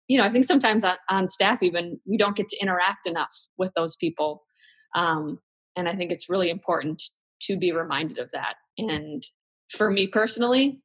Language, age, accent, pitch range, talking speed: English, 20-39, American, 170-200 Hz, 185 wpm